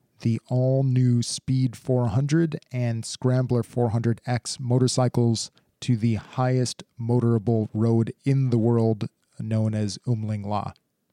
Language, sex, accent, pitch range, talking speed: English, male, American, 115-130 Hz, 110 wpm